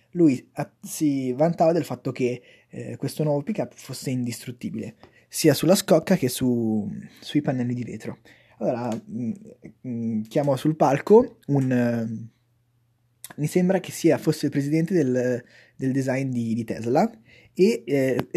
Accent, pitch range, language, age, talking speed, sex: native, 125-165 Hz, Italian, 20-39, 145 wpm, male